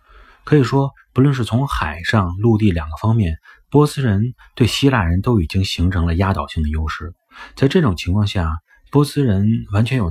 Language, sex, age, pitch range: Chinese, male, 30-49, 85-115 Hz